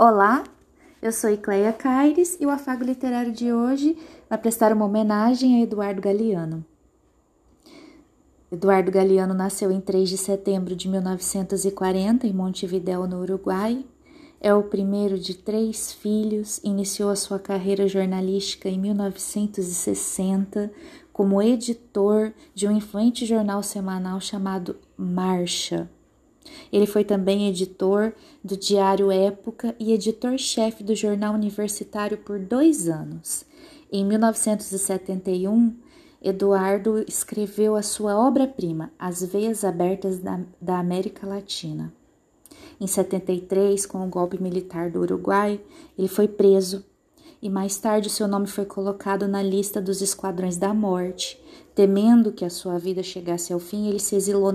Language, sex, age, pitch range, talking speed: Portuguese, female, 20-39, 190-220 Hz, 130 wpm